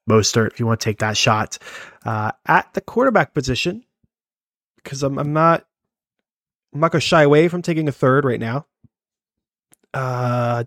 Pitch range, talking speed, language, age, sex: 110-140 Hz, 170 wpm, English, 20-39, male